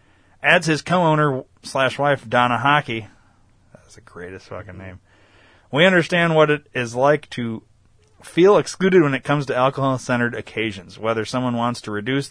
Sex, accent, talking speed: male, American, 155 wpm